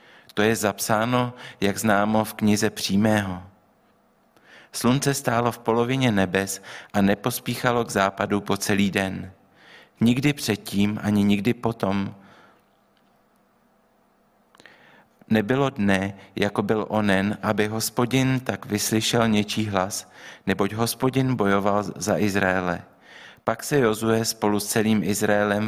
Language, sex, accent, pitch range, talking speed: Czech, male, native, 100-115 Hz, 110 wpm